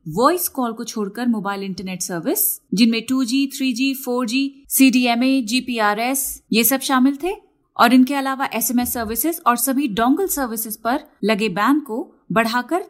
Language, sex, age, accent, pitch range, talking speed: Hindi, female, 30-49, native, 210-270 Hz, 145 wpm